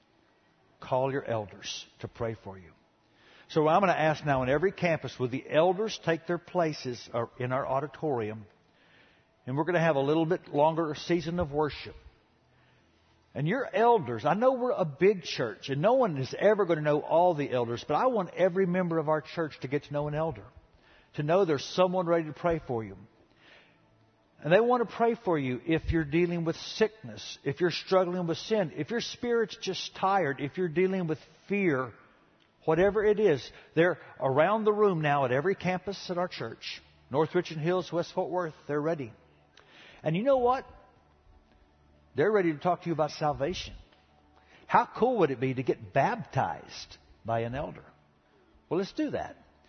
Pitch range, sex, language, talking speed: 125-185 Hz, male, English, 190 wpm